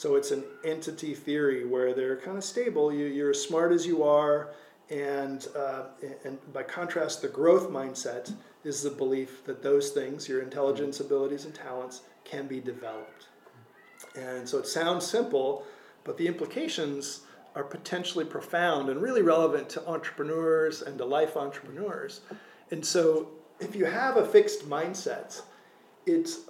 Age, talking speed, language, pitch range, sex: 40-59, 155 wpm, English, 145-240 Hz, male